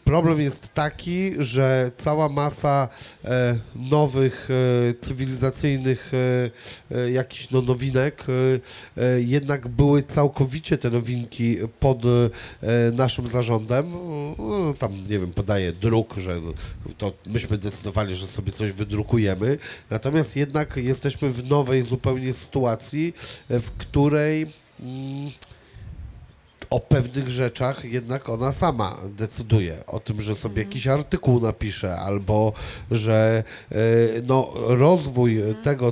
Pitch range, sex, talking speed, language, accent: 115-140 Hz, male, 100 wpm, Polish, native